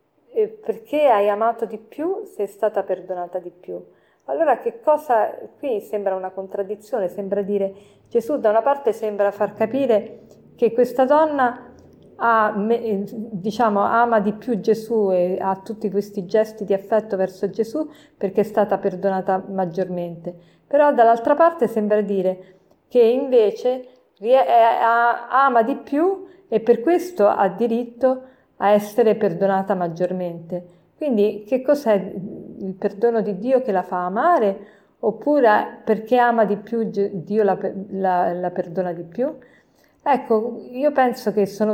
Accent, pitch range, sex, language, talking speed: native, 190-235 Hz, female, Italian, 140 wpm